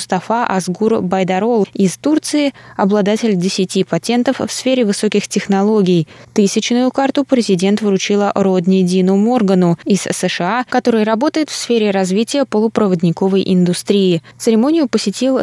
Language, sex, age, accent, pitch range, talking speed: Russian, female, 20-39, native, 180-225 Hz, 115 wpm